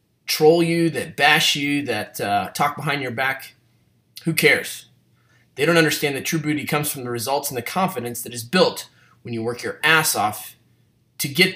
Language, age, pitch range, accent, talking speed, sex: English, 20-39, 120-150 Hz, American, 190 wpm, male